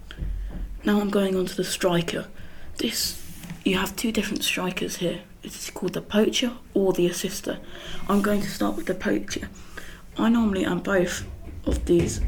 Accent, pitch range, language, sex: British, 180-205 Hz, English, female